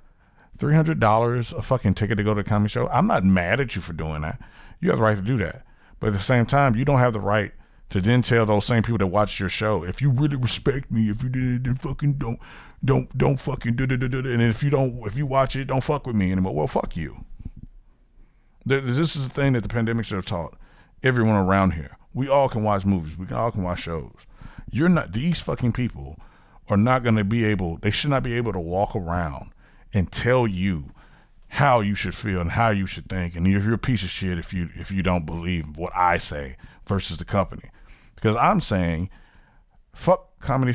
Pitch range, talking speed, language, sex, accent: 95-130 Hz, 225 wpm, English, male, American